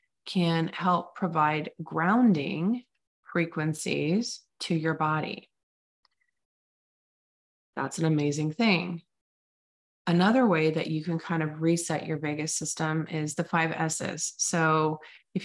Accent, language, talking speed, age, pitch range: American, English, 115 wpm, 20-39, 155-180 Hz